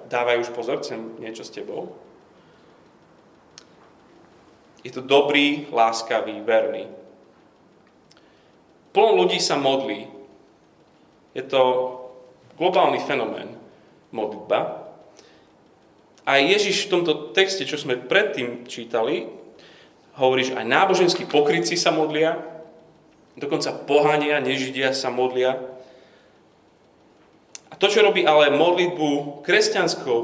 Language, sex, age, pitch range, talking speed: Slovak, male, 30-49, 125-160 Hz, 90 wpm